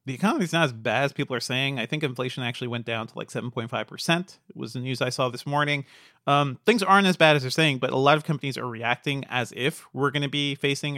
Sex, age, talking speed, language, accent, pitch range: male, 30-49, 285 wpm, English, American, 125-160 Hz